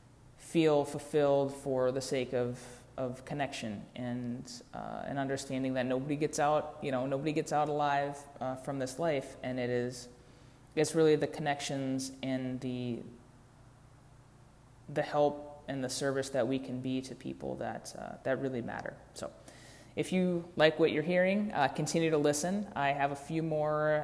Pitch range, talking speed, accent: 130-150 Hz, 165 wpm, American